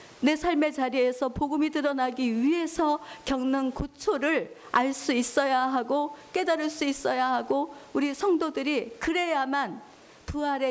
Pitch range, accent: 215-285 Hz, native